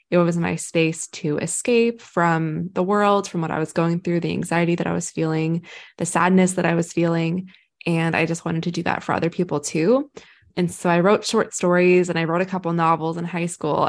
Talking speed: 230 wpm